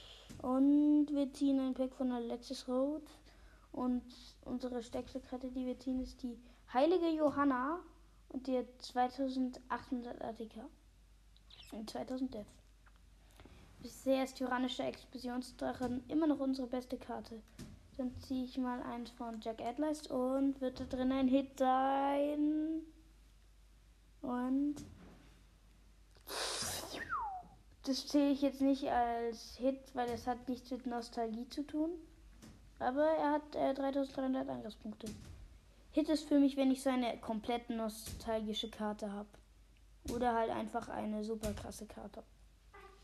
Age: 20-39